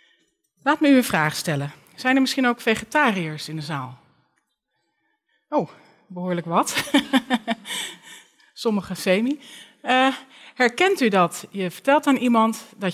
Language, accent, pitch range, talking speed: Dutch, Dutch, 170-255 Hz, 130 wpm